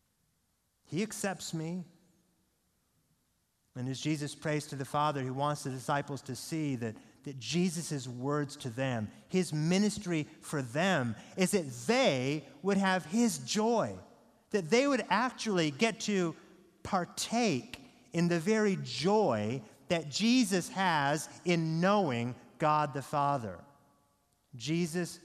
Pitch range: 145-215 Hz